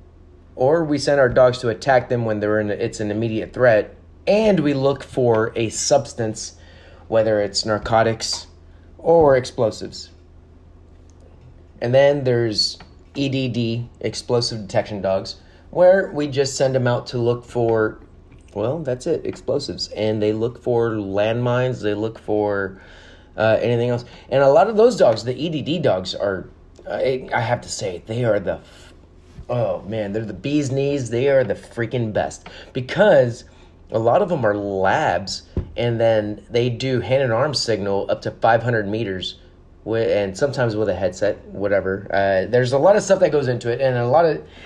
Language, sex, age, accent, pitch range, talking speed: English, male, 30-49, American, 100-130 Hz, 170 wpm